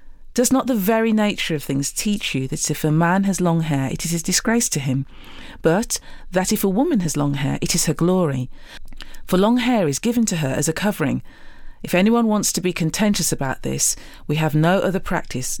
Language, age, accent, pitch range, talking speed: English, 40-59, British, 155-220 Hz, 220 wpm